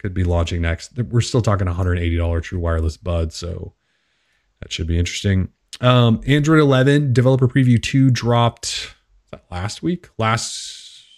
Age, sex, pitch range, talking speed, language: 30-49, male, 95-120 Hz, 140 wpm, English